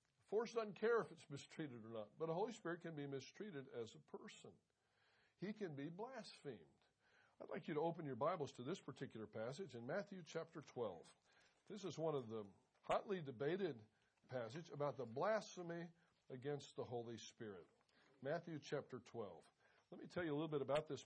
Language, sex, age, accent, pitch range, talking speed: English, male, 60-79, American, 135-185 Hz, 180 wpm